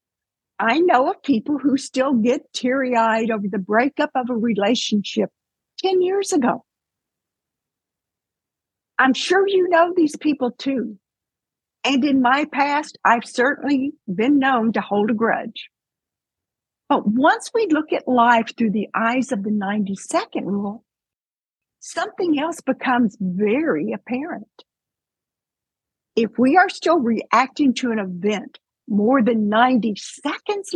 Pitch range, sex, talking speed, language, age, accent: 220-315 Hz, female, 130 wpm, English, 60-79, American